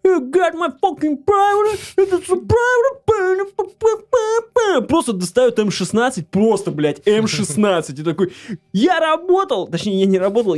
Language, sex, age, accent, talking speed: Russian, male, 20-39, native, 90 wpm